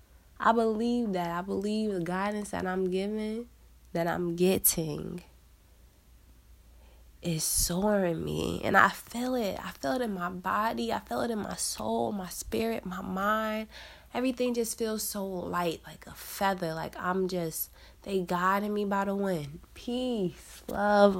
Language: English